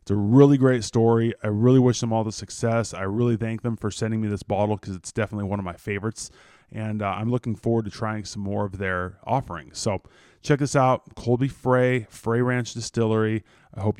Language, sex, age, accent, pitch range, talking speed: English, male, 20-39, American, 110-135 Hz, 220 wpm